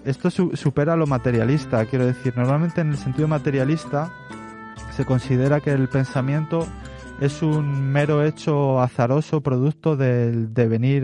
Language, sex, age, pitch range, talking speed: Spanish, male, 30-49, 120-145 Hz, 130 wpm